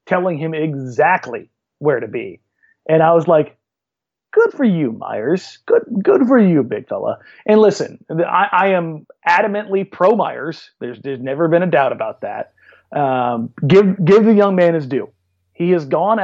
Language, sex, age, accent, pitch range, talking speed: English, male, 30-49, American, 140-185 Hz, 175 wpm